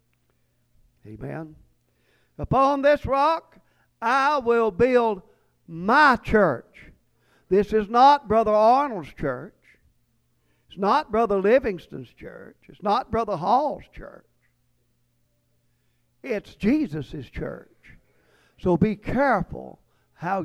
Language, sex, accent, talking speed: English, male, American, 95 wpm